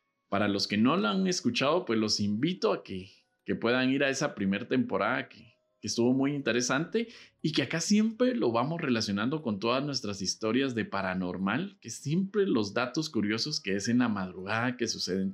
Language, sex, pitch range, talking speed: Spanish, male, 105-180 Hz, 190 wpm